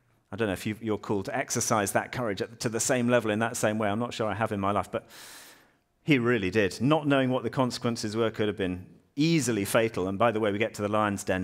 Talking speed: 270 wpm